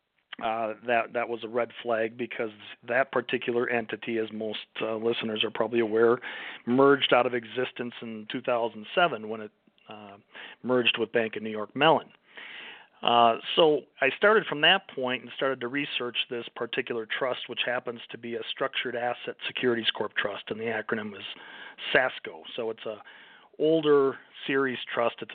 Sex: male